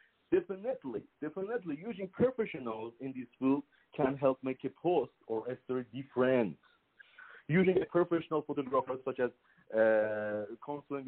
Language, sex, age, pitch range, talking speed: English, male, 50-69, 125-180 Hz, 130 wpm